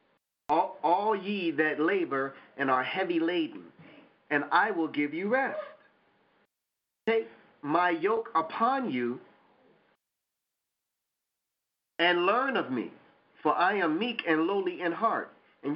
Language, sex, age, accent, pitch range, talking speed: English, male, 40-59, American, 130-175 Hz, 125 wpm